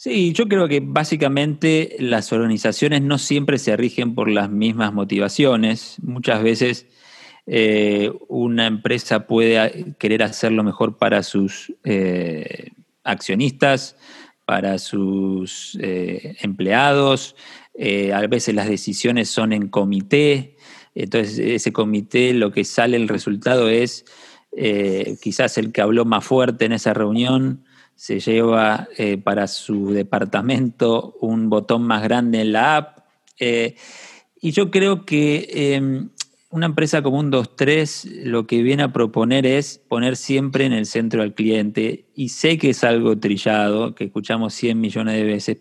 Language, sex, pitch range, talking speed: Spanish, male, 110-135 Hz, 145 wpm